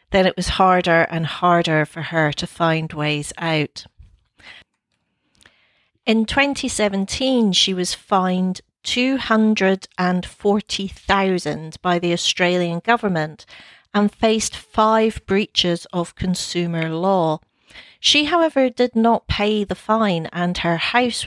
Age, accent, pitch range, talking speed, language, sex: 40-59, British, 170-210 Hz, 110 wpm, English, female